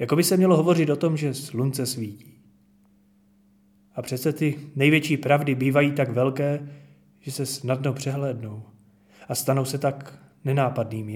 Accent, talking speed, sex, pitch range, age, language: native, 145 wpm, male, 100-140 Hz, 30-49, Czech